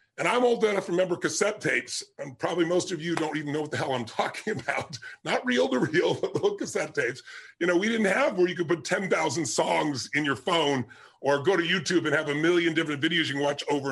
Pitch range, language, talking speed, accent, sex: 150-195 Hz, English, 250 wpm, American, female